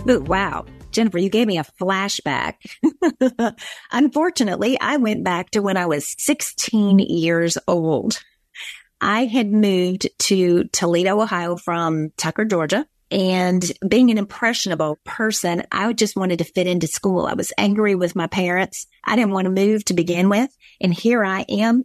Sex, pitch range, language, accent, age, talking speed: female, 180-245 Hz, English, American, 30-49, 155 wpm